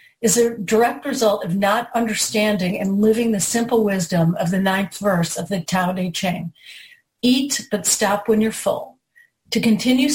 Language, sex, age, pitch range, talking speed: English, female, 50-69, 190-235 Hz, 170 wpm